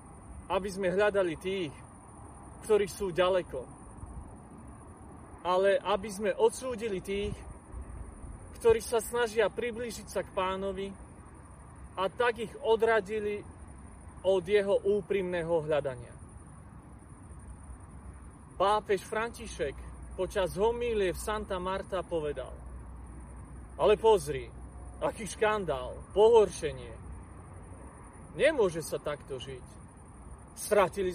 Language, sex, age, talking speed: Slovak, male, 30-49, 85 wpm